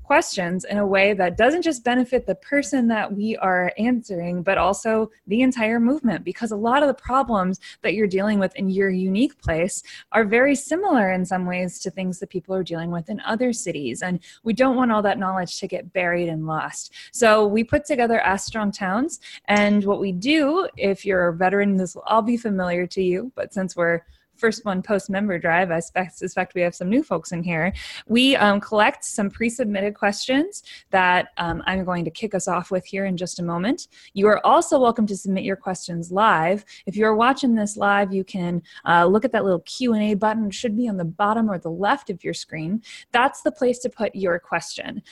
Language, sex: English, female